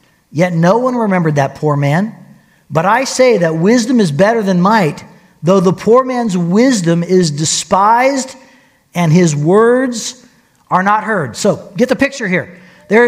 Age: 40-59